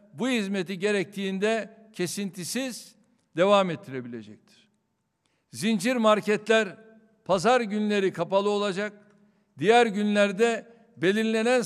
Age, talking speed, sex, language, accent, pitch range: 60-79, 75 wpm, male, Turkish, native, 185-220 Hz